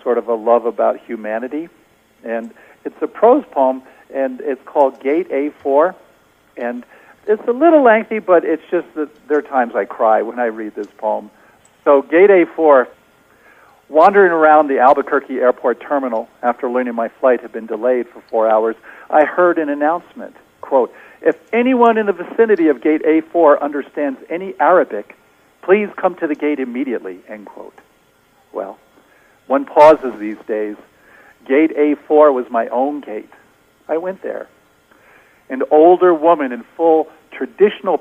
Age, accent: 50-69, American